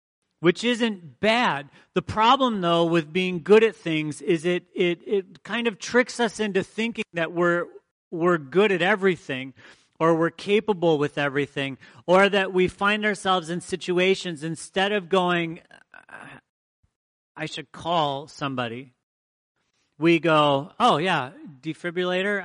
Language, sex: English, male